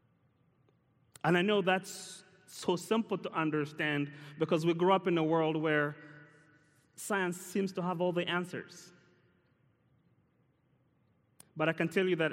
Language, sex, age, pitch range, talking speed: English, male, 30-49, 145-175 Hz, 140 wpm